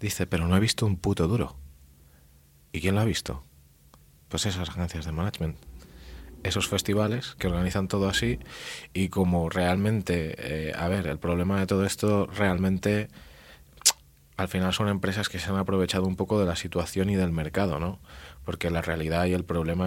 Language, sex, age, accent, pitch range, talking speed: Spanish, male, 30-49, Spanish, 80-95 Hz, 180 wpm